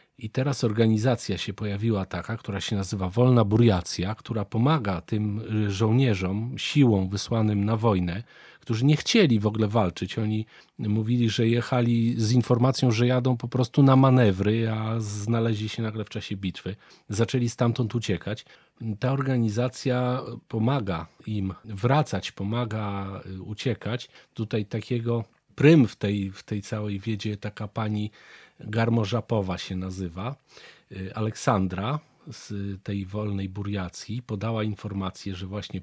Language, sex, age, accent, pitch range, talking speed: Polish, male, 40-59, native, 105-125 Hz, 130 wpm